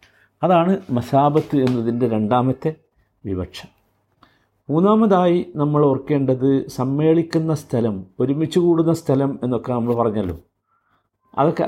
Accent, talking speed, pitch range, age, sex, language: native, 85 wpm, 120-160 Hz, 50-69, male, Malayalam